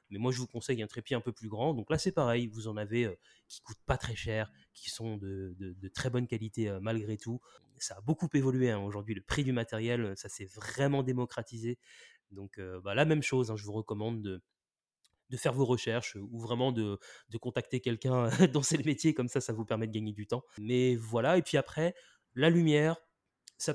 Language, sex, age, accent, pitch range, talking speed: French, male, 20-39, French, 110-130 Hz, 230 wpm